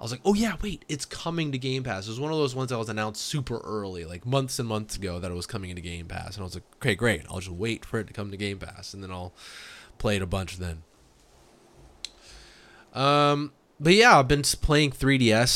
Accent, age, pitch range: American, 20-39, 100-135 Hz